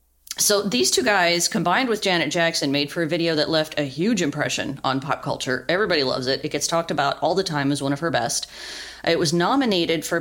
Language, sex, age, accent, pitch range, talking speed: English, female, 30-49, American, 145-185 Hz, 230 wpm